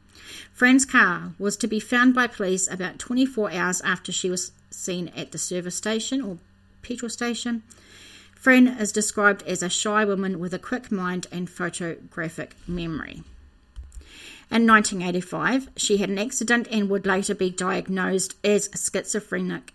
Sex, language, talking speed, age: female, English, 150 wpm, 30-49